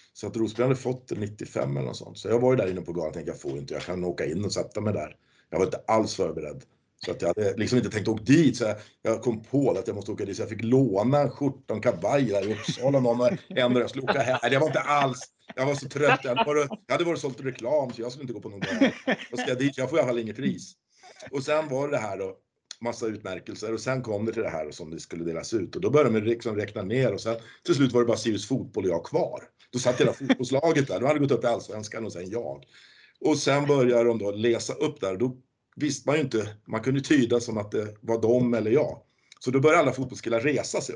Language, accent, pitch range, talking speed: Swedish, native, 110-140 Hz, 260 wpm